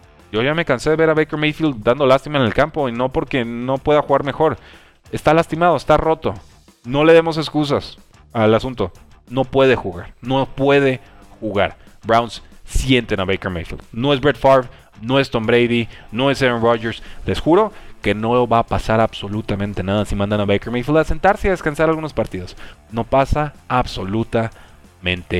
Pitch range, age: 100-145 Hz, 30-49